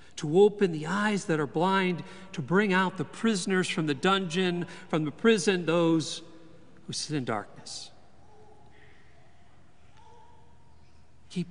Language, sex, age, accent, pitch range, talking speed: English, male, 50-69, American, 150-190 Hz, 125 wpm